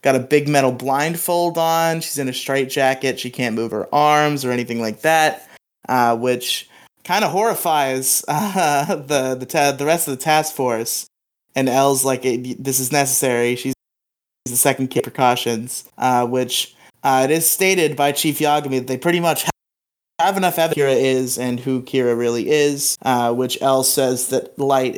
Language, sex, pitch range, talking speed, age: English, male, 125-145 Hz, 185 wpm, 20-39